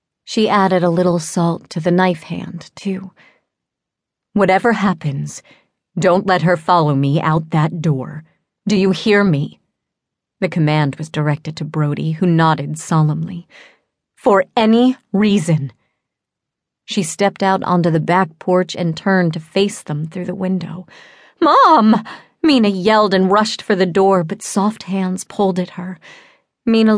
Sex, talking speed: female, 145 wpm